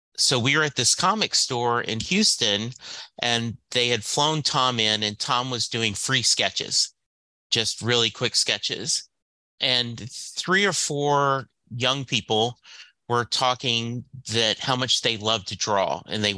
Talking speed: 155 wpm